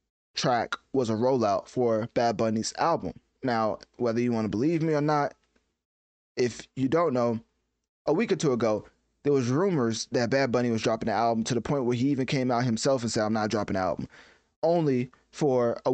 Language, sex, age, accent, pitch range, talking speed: English, male, 20-39, American, 110-135 Hz, 205 wpm